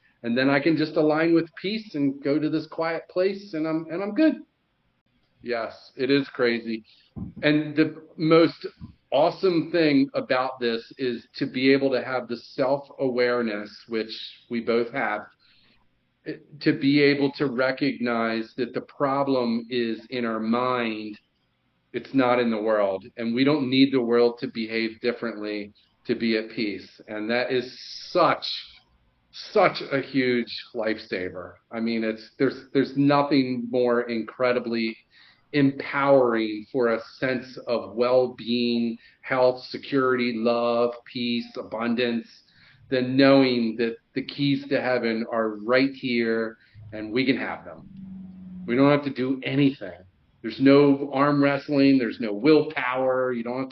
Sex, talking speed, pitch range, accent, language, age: male, 145 wpm, 115-140 Hz, American, English, 40-59